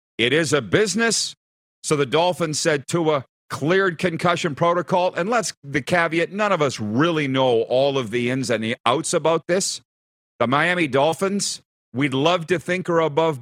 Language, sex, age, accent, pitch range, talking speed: English, male, 50-69, American, 135-180 Hz, 175 wpm